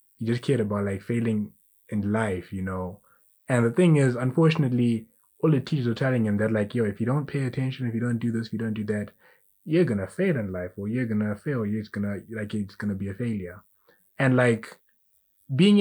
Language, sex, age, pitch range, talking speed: English, male, 20-39, 105-130 Hz, 240 wpm